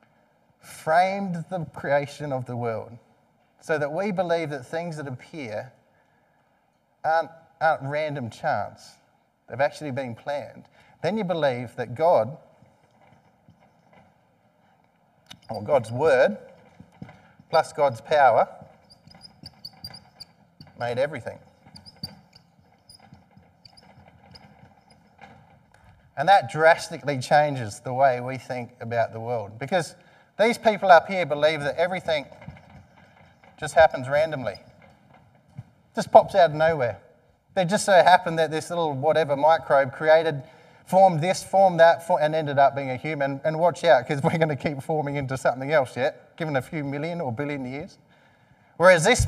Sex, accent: male, Australian